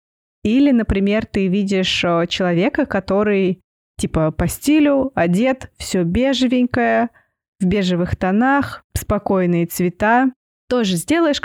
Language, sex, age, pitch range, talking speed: Russian, female, 20-39, 185-240 Hz, 100 wpm